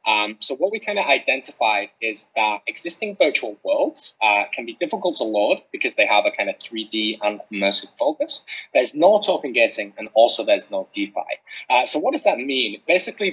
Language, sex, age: Chinese, male, 10-29